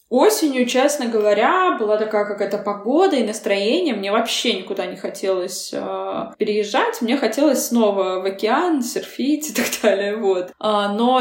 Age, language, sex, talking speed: 20-39, Russian, female, 135 wpm